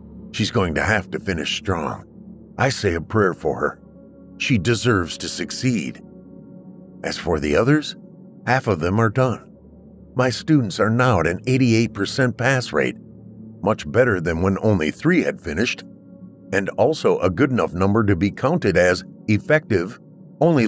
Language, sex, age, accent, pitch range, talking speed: English, male, 50-69, American, 95-145 Hz, 160 wpm